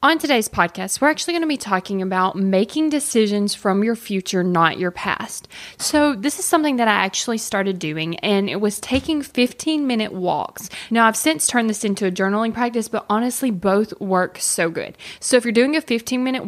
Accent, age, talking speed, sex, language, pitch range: American, 20-39, 195 wpm, female, English, 195-245 Hz